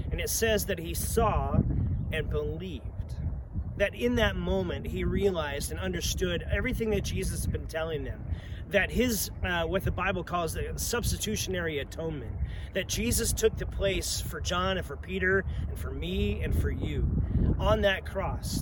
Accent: American